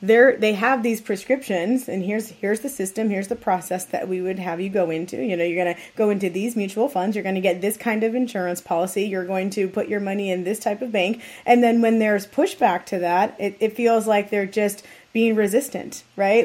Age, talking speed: 20-39, 235 wpm